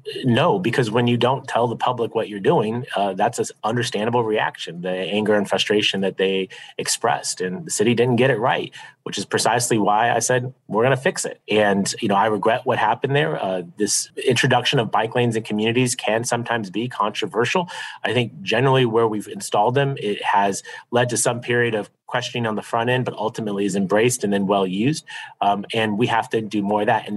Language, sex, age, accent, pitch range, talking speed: English, male, 30-49, American, 100-120 Hz, 215 wpm